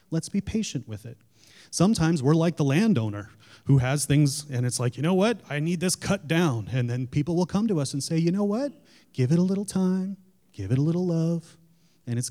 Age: 30-49